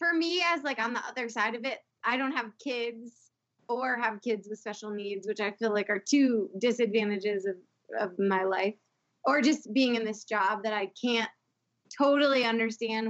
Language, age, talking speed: English, 20-39, 195 wpm